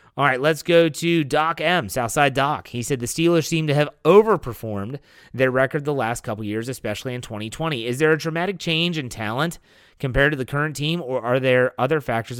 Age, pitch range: 30-49, 120-165 Hz